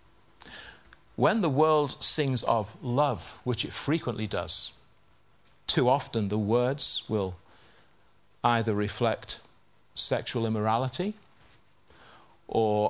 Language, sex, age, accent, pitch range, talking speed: English, male, 40-59, British, 110-135 Hz, 95 wpm